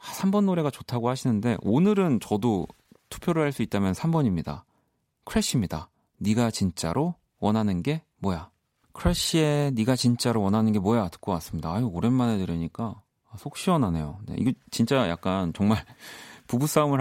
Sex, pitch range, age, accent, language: male, 100-145 Hz, 40-59, native, Korean